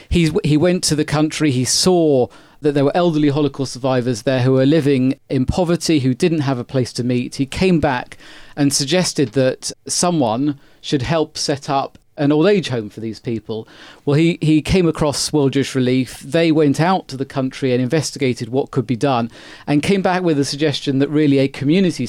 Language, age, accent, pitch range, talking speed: English, 40-59, British, 130-155 Hz, 205 wpm